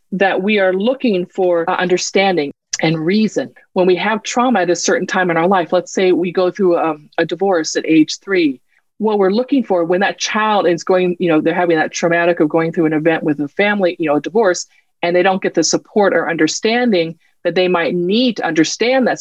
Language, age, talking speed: English, 40-59, 230 wpm